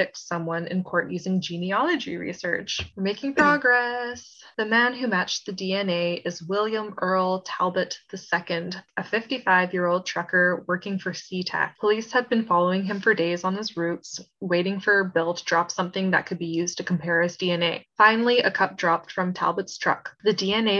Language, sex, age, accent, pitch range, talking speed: English, female, 20-39, American, 175-210 Hz, 175 wpm